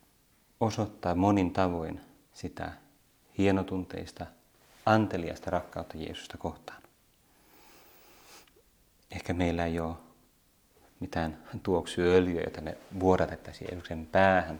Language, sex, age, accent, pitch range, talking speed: Finnish, male, 30-49, native, 85-95 Hz, 80 wpm